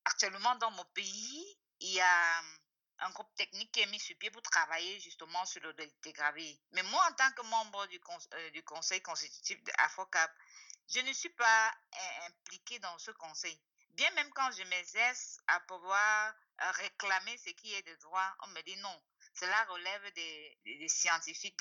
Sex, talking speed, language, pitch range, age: female, 185 wpm, English, 185-245 Hz, 50-69